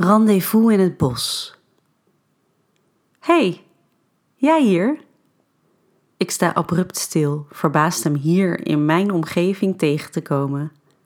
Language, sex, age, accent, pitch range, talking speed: Dutch, female, 30-49, Dutch, 155-185 Hz, 115 wpm